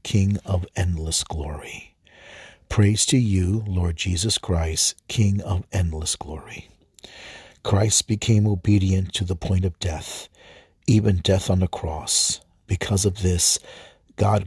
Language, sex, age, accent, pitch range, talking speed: English, male, 50-69, American, 85-100 Hz, 130 wpm